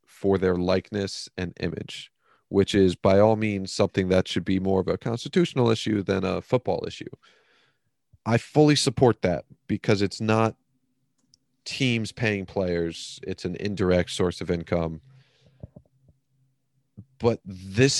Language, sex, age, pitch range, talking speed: English, male, 40-59, 95-125 Hz, 135 wpm